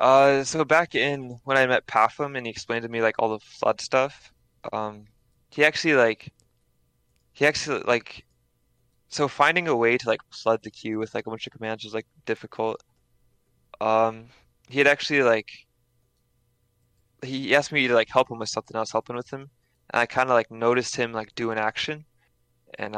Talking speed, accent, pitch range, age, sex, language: 190 wpm, American, 110-120 Hz, 20-39, male, English